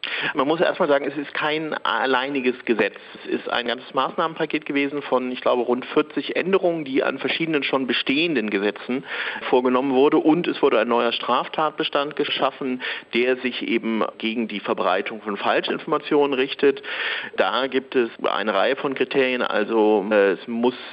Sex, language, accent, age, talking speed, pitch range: male, German, German, 40-59, 160 wpm, 110-135 Hz